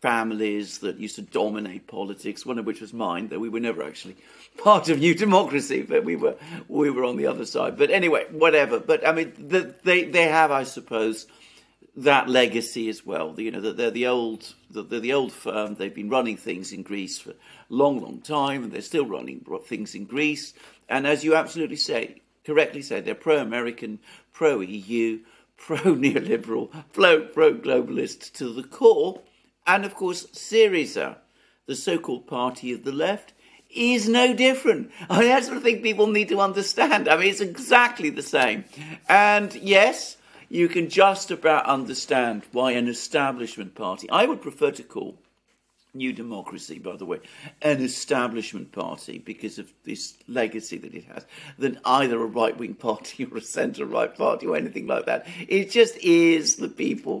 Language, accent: English, British